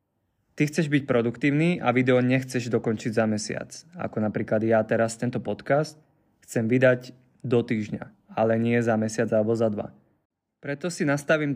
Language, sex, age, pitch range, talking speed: Slovak, male, 20-39, 115-135 Hz, 155 wpm